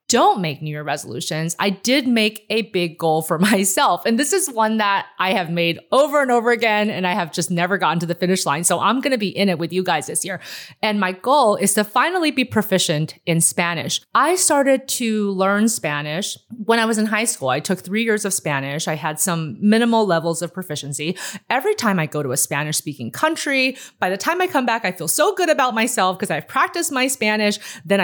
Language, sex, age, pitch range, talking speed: English, female, 30-49, 175-235 Hz, 230 wpm